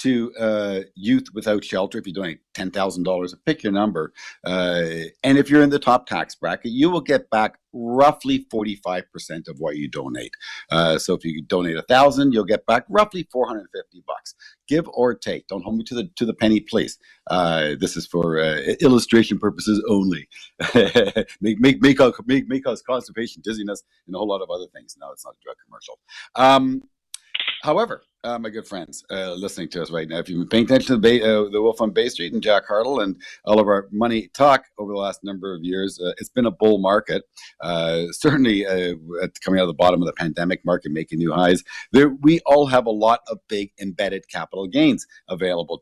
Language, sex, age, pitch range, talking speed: English, male, 50-69, 95-135 Hz, 215 wpm